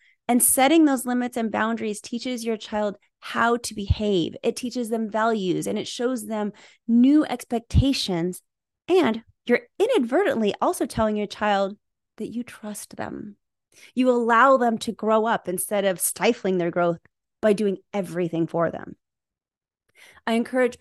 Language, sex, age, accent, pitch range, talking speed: English, female, 30-49, American, 205-250 Hz, 145 wpm